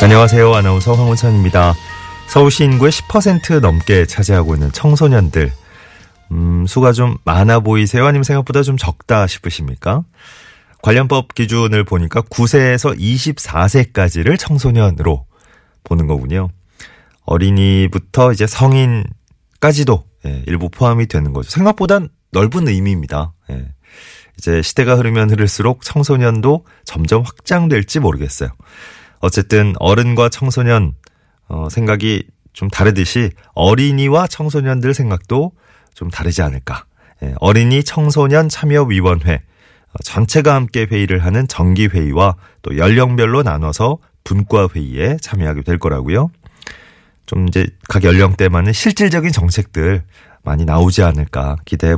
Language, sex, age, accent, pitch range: Korean, male, 30-49, native, 90-130 Hz